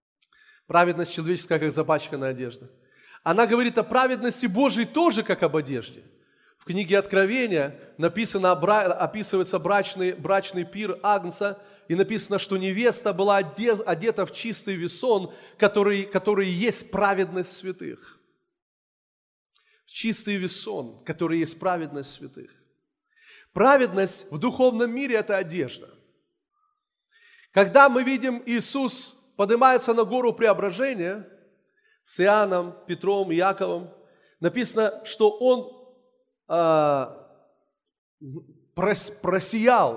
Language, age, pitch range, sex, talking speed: Russian, 30-49, 180-250 Hz, male, 100 wpm